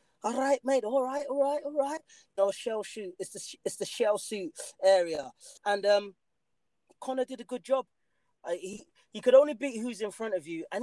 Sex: male